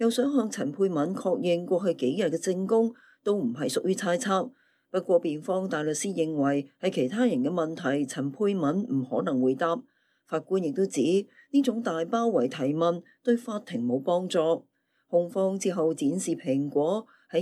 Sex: female